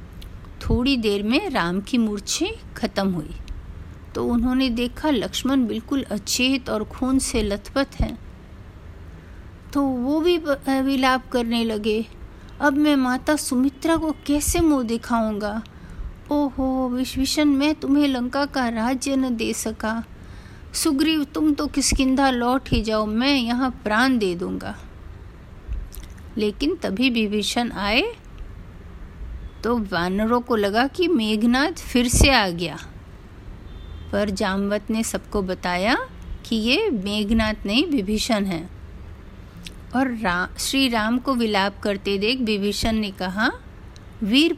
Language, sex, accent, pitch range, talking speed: Hindi, female, native, 175-270 Hz, 125 wpm